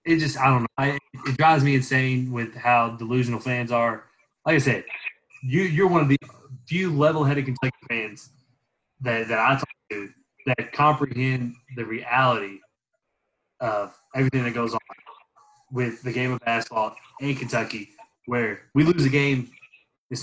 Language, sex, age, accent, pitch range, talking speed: English, male, 20-39, American, 120-145 Hz, 165 wpm